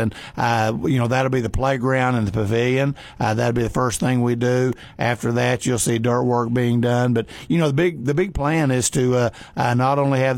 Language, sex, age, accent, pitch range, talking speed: English, male, 60-79, American, 115-130 Hz, 245 wpm